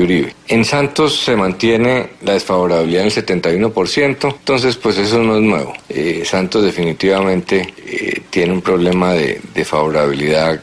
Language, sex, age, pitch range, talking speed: Spanish, male, 40-59, 90-115 Hz, 135 wpm